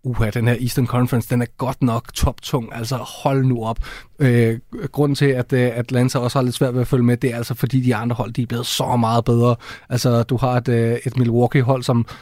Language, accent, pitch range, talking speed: Danish, native, 120-135 Hz, 235 wpm